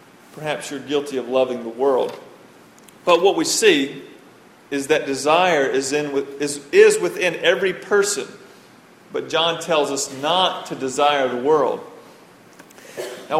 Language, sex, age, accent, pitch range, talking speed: English, male, 40-59, American, 140-190 Hz, 140 wpm